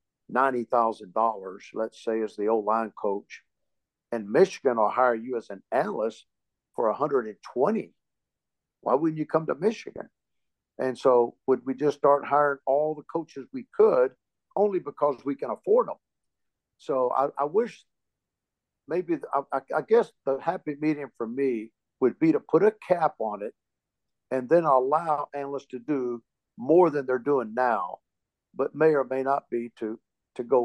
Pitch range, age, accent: 115-150 Hz, 50-69, American